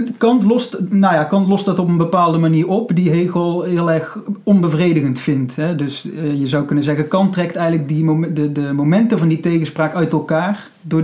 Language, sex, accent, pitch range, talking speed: Dutch, male, Dutch, 150-180 Hz, 200 wpm